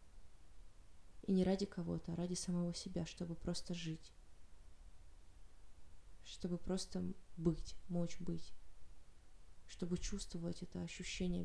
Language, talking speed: Russian, 105 wpm